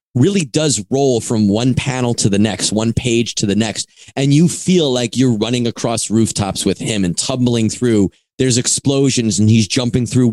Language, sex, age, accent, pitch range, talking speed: English, male, 30-49, American, 105-130 Hz, 190 wpm